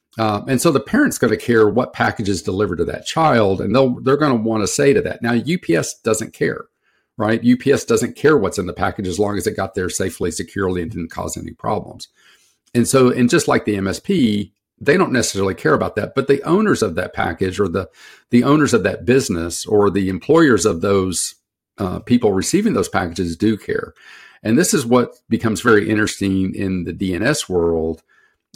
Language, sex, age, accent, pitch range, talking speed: English, male, 50-69, American, 100-135 Hz, 205 wpm